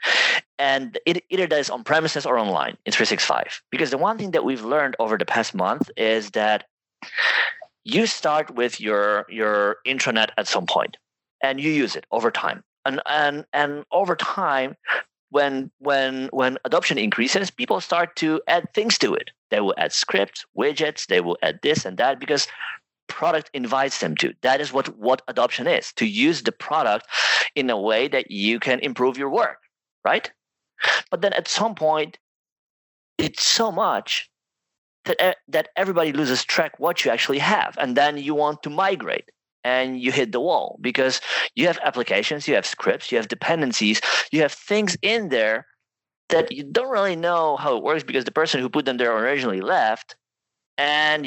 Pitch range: 130-170 Hz